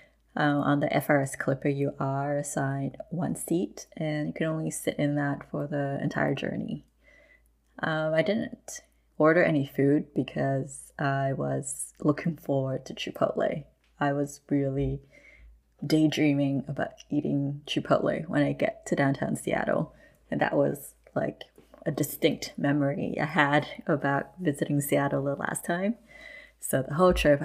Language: English